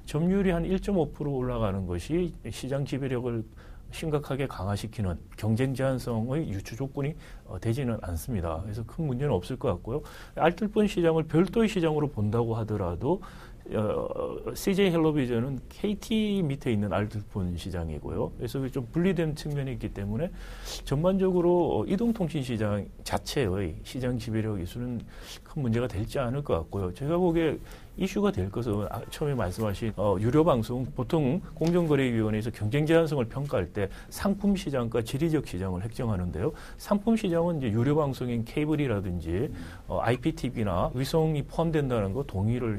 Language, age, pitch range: Korean, 40-59, 105-160 Hz